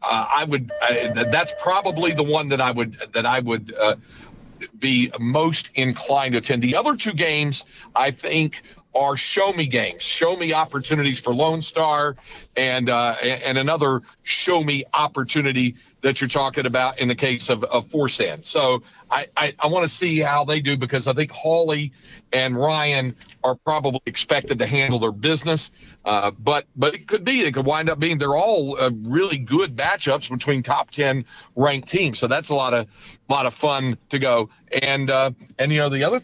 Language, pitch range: English, 130-160 Hz